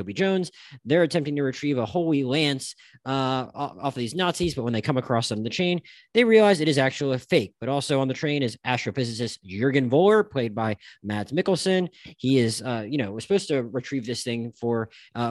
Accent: American